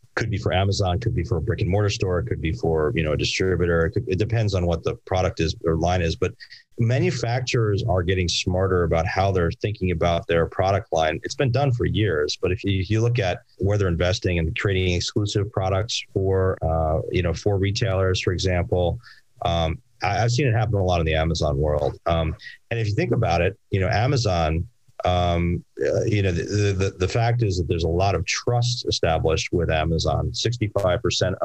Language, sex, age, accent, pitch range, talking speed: English, male, 30-49, American, 90-115 Hz, 205 wpm